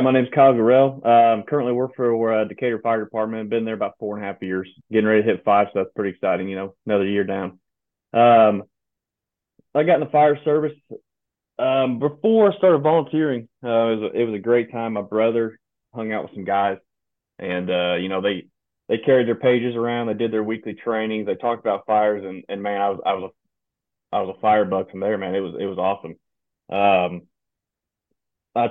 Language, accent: English, American